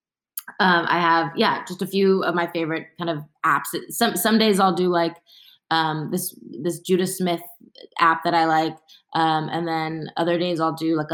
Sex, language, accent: female, English, American